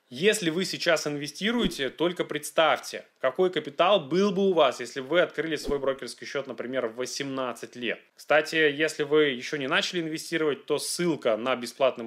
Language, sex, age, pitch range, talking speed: Russian, male, 20-39, 130-175 Hz, 170 wpm